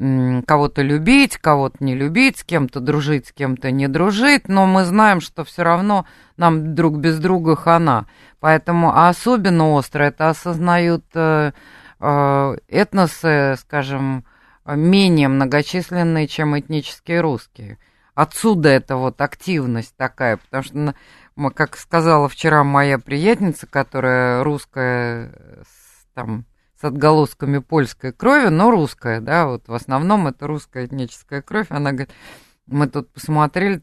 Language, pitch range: Russian, 130-170 Hz